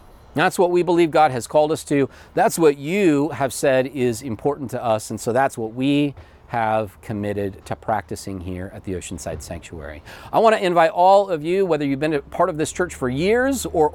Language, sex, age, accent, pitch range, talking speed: English, male, 40-59, American, 110-160 Hz, 215 wpm